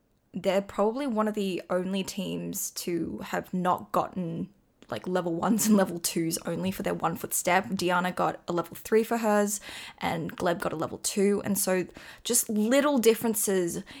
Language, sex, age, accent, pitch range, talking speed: English, female, 10-29, Australian, 185-220 Hz, 175 wpm